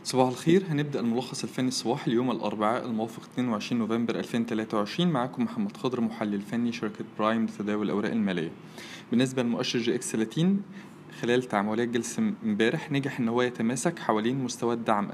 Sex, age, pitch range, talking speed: male, 20-39, 120-160 Hz, 150 wpm